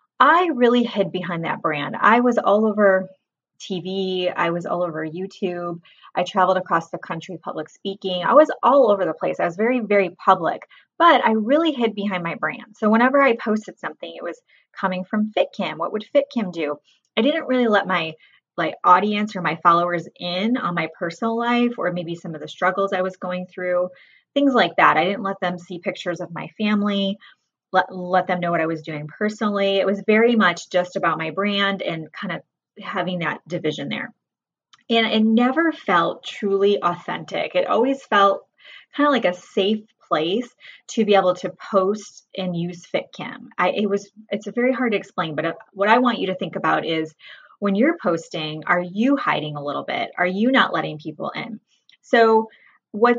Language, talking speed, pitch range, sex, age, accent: English, 200 wpm, 180-225 Hz, female, 20-39, American